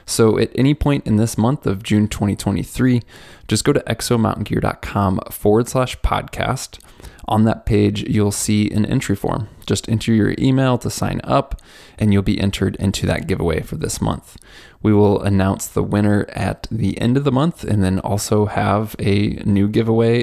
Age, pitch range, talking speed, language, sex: 20-39, 100-120 Hz, 180 wpm, English, male